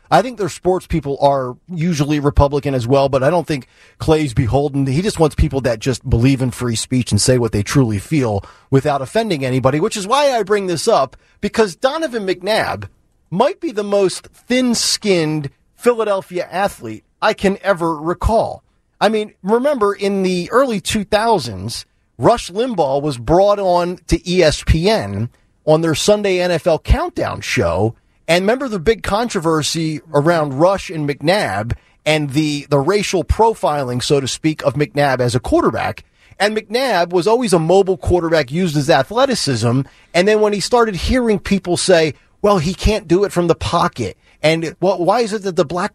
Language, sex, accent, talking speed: English, male, American, 170 wpm